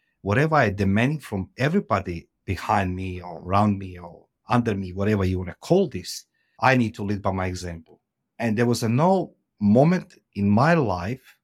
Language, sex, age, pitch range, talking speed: English, male, 50-69, 90-120 Hz, 180 wpm